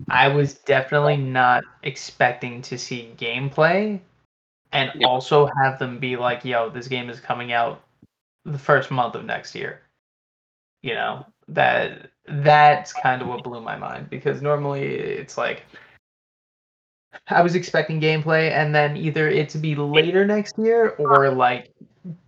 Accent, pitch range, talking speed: American, 125-150 Hz, 150 wpm